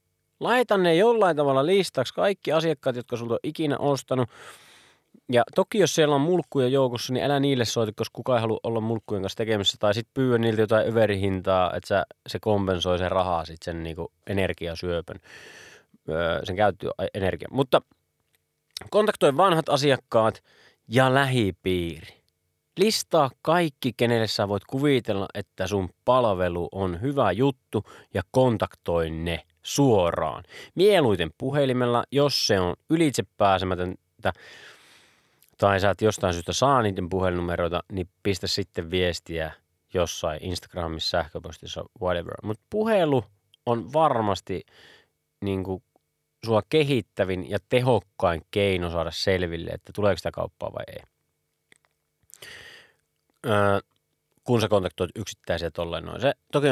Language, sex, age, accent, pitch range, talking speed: Finnish, male, 30-49, native, 95-135 Hz, 125 wpm